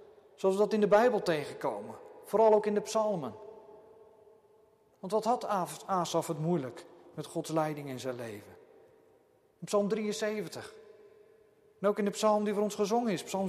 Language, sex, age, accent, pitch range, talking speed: Dutch, male, 40-59, Dutch, 190-230 Hz, 170 wpm